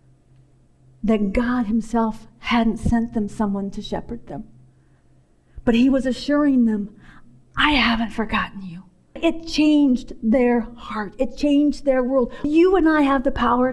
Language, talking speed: English, 145 wpm